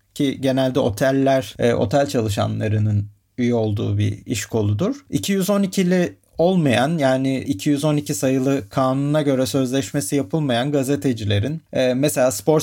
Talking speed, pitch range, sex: 105 wpm, 120-170 Hz, male